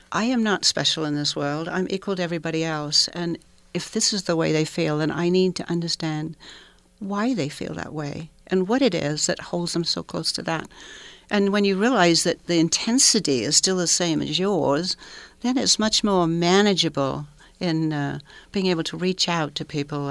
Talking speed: 205 wpm